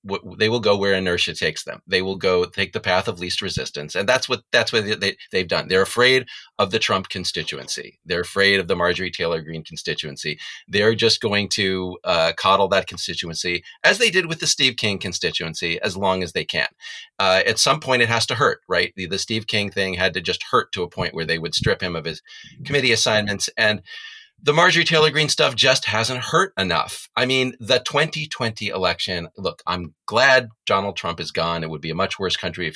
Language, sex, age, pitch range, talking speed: English, male, 40-59, 90-130 Hz, 220 wpm